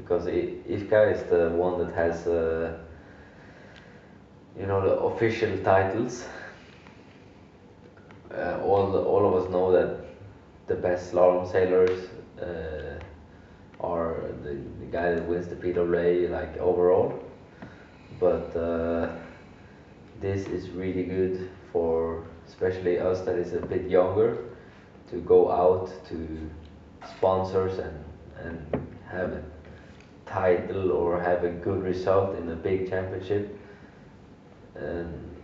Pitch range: 85-95 Hz